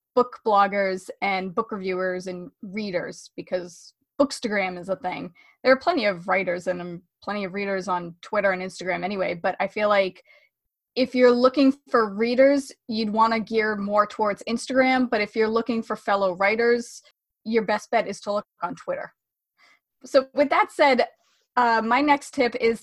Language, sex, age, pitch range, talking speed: English, female, 20-39, 200-265 Hz, 175 wpm